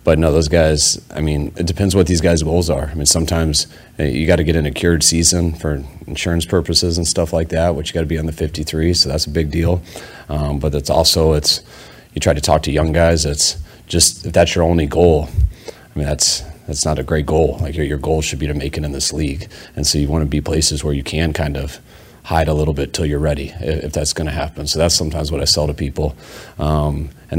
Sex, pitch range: male, 75-85 Hz